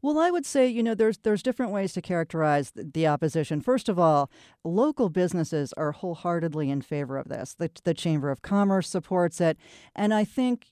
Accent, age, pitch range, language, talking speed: American, 40-59, 160-200 Hz, English, 195 wpm